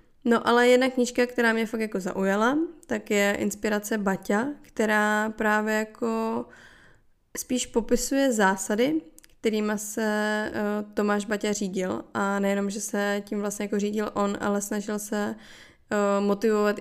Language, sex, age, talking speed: Czech, female, 20-39, 130 wpm